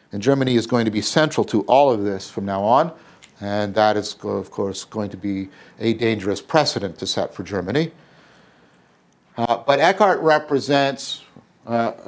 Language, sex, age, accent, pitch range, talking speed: English, male, 50-69, American, 115-165 Hz, 170 wpm